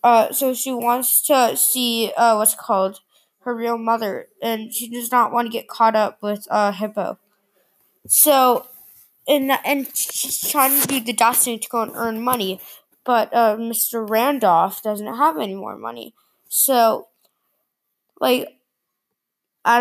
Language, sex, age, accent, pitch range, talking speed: English, female, 20-39, American, 210-250 Hz, 150 wpm